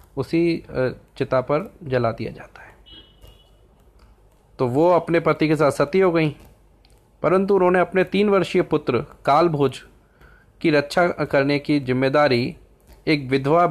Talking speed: 130 wpm